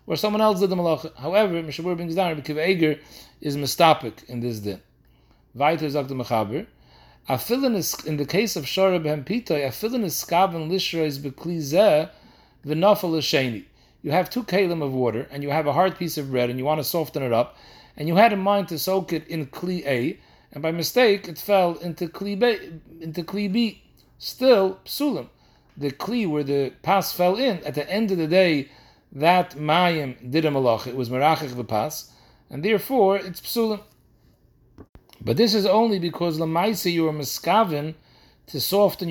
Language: English